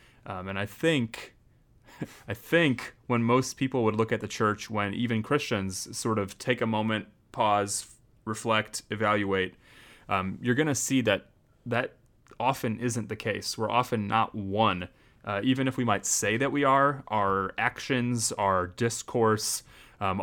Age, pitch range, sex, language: 30-49, 105-125 Hz, male, English